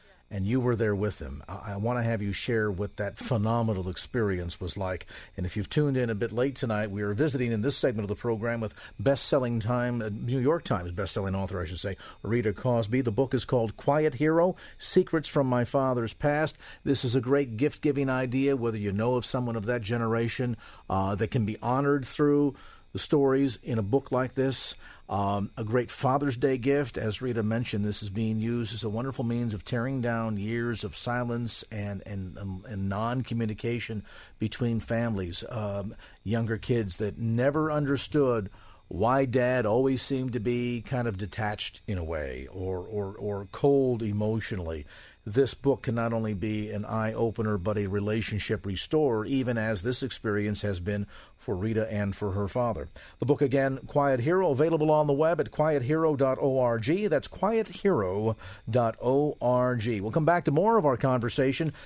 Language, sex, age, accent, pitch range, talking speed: English, male, 50-69, American, 105-135 Hz, 180 wpm